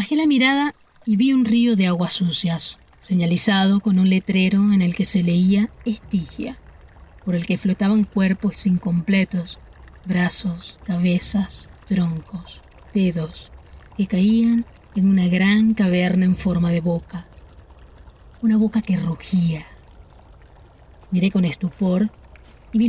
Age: 30-49